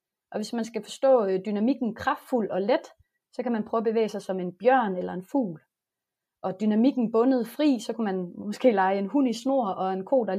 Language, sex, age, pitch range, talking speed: Danish, female, 30-49, 195-260 Hz, 230 wpm